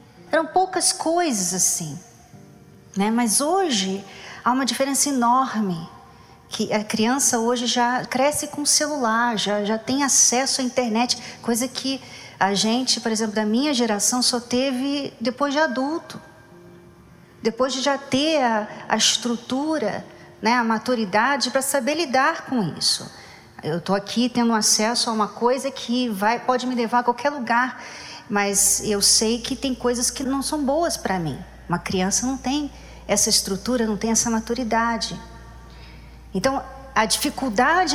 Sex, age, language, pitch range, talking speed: female, 40-59, Portuguese, 220-275 Hz, 150 wpm